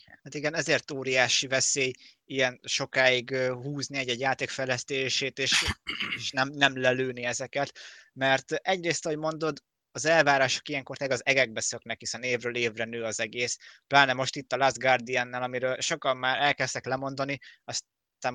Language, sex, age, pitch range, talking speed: Hungarian, male, 20-39, 115-135 Hz, 145 wpm